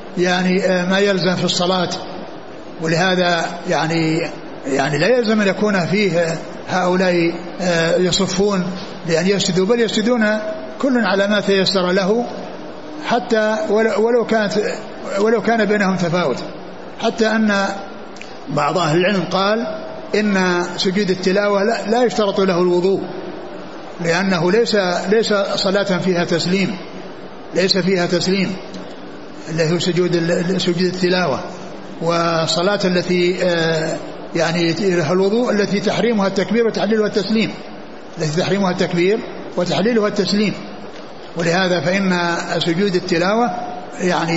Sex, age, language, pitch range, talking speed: male, 60-79, Arabic, 175-205 Hz, 100 wpm